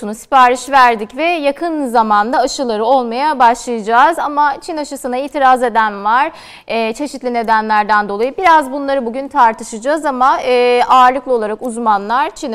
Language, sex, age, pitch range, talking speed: Turkish, female, 30-49, 225-285 Hz, 125 wpm